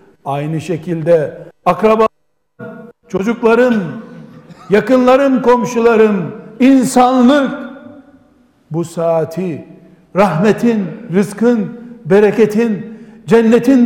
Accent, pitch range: native, 165-230 Hz